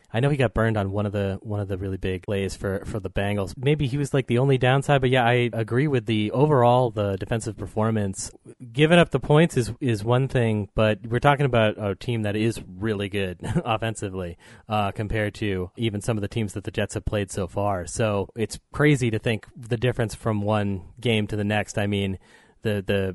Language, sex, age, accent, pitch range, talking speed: English, male, 30-49, American, 105-125 Hz, 225 wpm